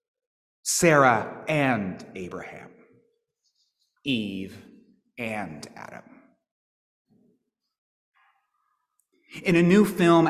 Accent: American